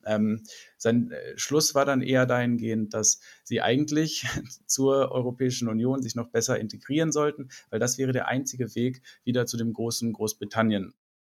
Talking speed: 155 wpm